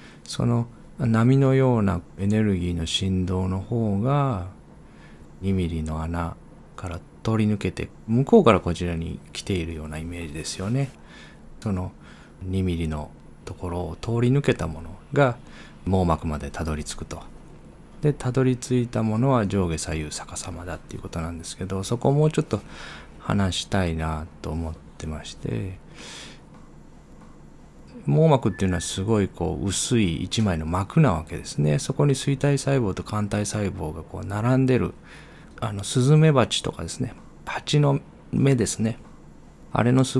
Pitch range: 85-120 Hz